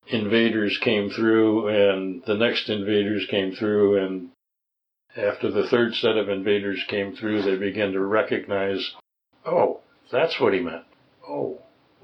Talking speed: 140 wpm